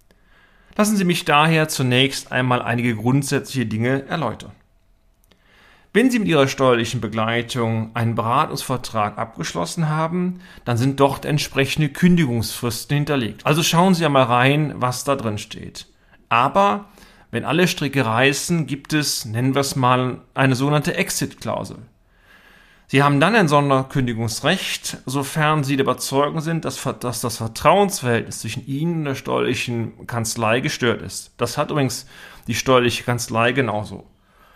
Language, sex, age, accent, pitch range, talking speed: German, male, 40-59, German, 120-150 Hz, 130 wpm